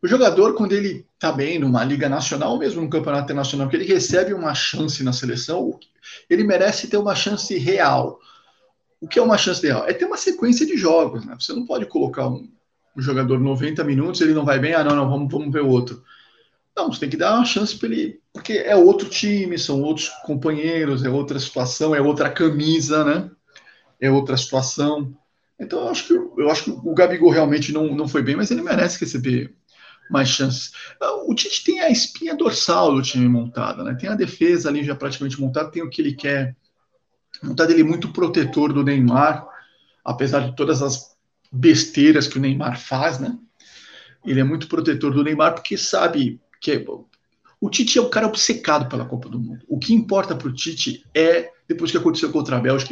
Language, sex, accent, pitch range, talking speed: Portuguese, male, Brazilian, 140-205 Hz, 205 wpm